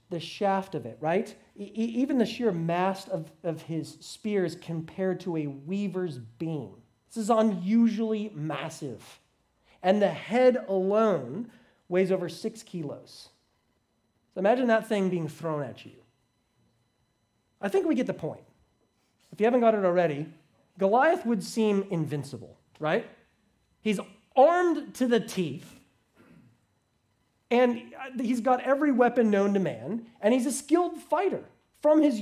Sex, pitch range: male, 150-225 Hz